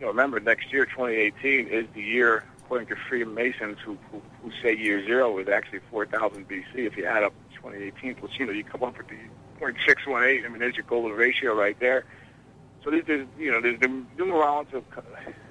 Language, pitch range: English, 110-130 Hz